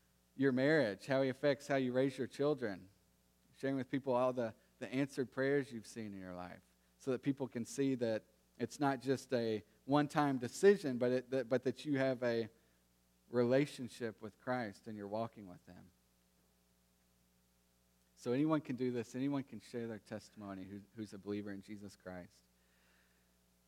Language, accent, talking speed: English, American, 165 wpm